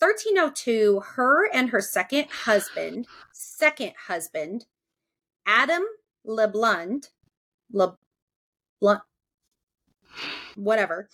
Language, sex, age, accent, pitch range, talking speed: English, female, 30-49, American, 200-280 Hz, 60 wpm